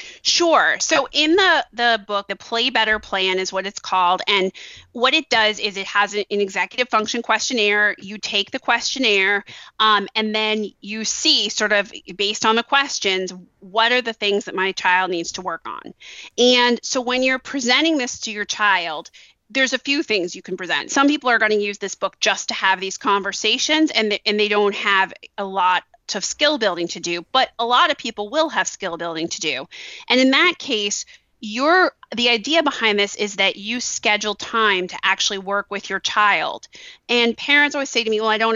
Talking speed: 210 wpm